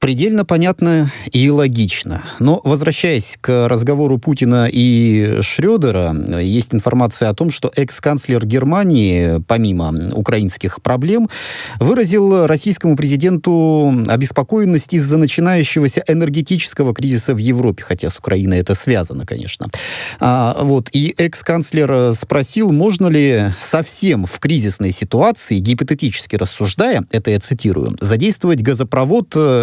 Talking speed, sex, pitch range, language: 110 wpm, male, 105-150 Hz, Russian